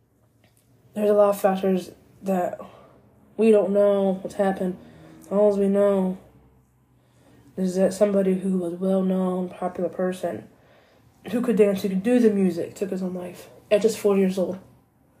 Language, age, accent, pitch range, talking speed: English, 20-39, American, 180-205 Hz, 160 wpm